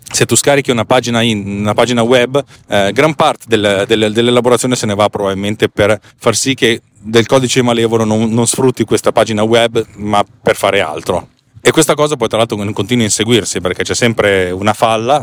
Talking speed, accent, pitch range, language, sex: 180 wpm, native, 105-130 Hz, Italian, male